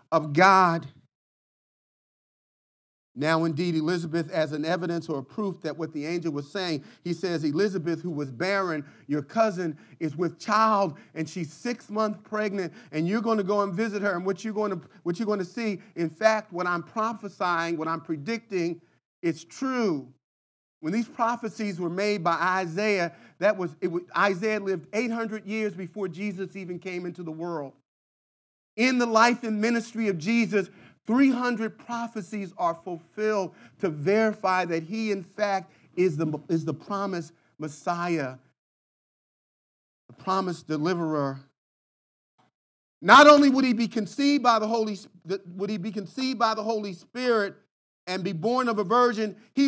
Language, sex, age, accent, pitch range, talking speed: English, male, 40-59, American, 170-230 Hz, 160 wpm